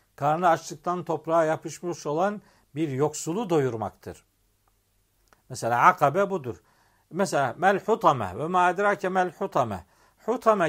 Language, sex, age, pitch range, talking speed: Turkish, male, 50-69, 140-200 Hz, 100 wpm